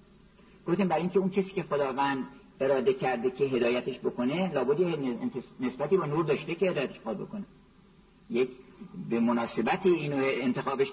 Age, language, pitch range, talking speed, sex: 50-69, Persian, 170-200 Hz, 145 wpm, male